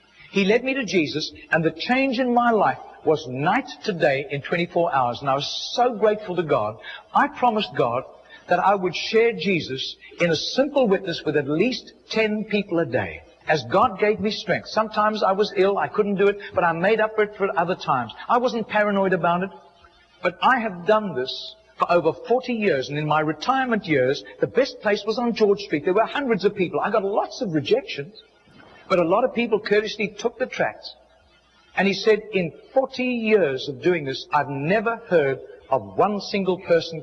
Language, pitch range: English, 160-220 Hz